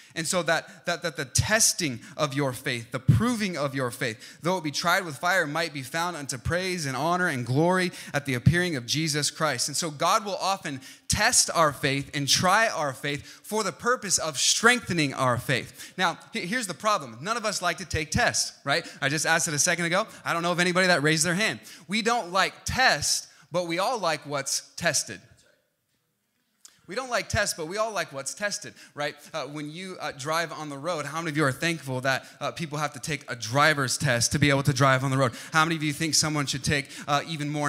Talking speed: 230 wpm